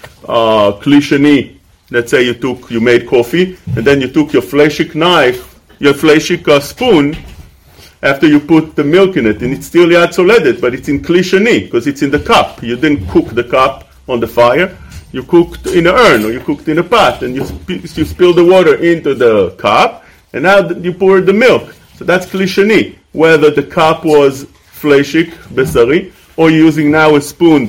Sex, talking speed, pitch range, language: male, 195 wpm, 125-165 Hz, English